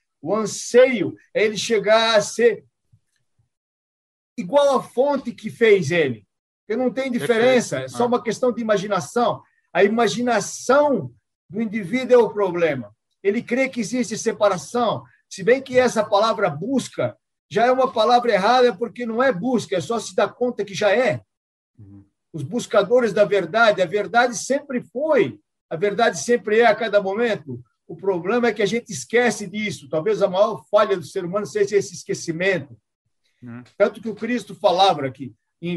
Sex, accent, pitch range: male, Brazilian, 180-240 Hz